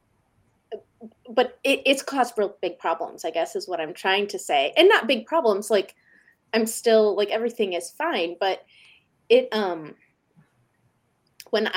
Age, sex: 20-39, female